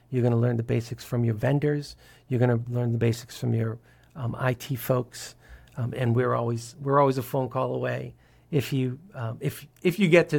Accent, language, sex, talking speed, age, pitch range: American, English, male, 220 wpm, 50-69, 120-150 Hz